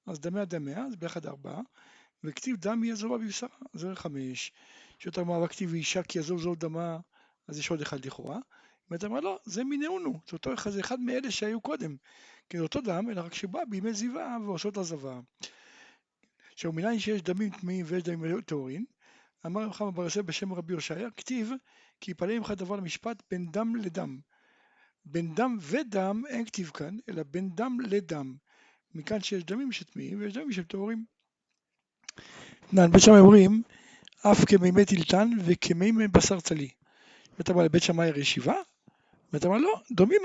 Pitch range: 170-225 Hz